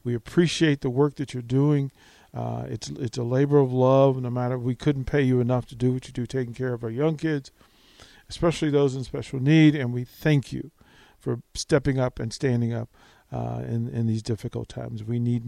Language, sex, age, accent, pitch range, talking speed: English, male, 50-69, American, 120-140 Hz, 215 wpm